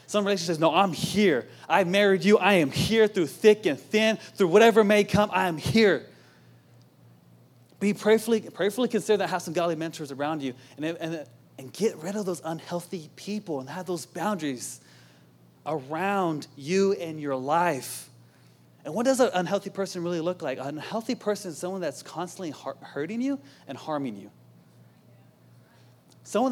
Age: 20-39